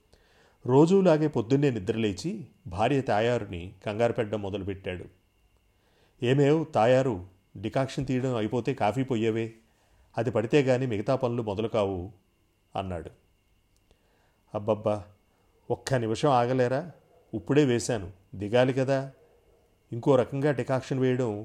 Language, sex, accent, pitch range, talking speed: Telugu, male, native, 100-130 Hz, 100 wpm